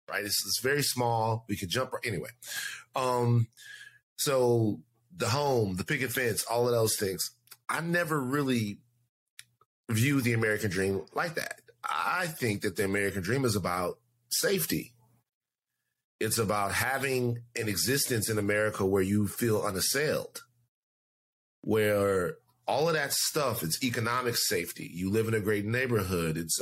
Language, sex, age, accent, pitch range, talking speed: English, male, 30-49, American, 105-130 Hz, 145 wpm